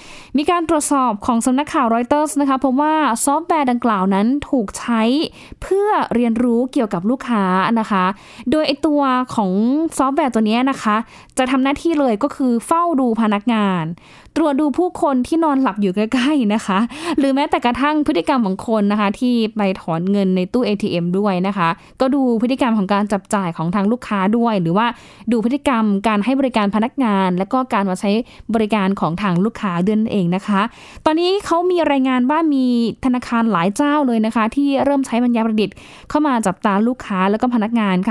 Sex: female